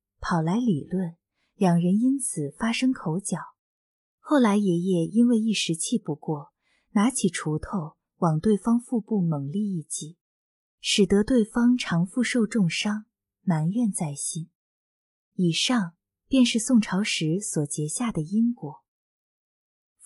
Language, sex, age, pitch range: Chinese, female, 20-39, 170-235 Hz